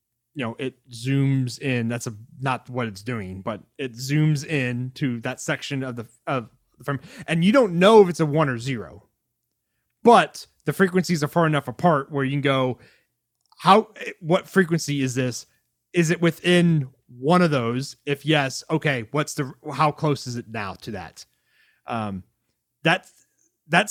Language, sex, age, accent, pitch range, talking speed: English, male, 30-49, American, 120-155 Hz, 175 wpm